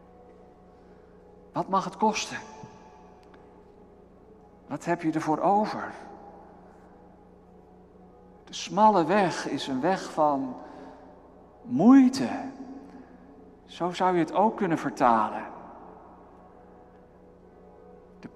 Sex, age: male, 60-79